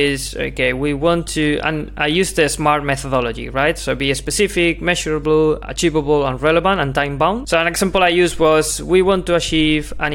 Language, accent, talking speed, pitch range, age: English, Spanish, 190 wpm, 140-170 Hz, 20-39